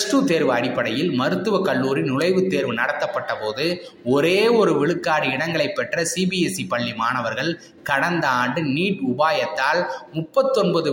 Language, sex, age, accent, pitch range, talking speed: Tamil, male, 20-39, native, 130-185 Hz, 115 wpm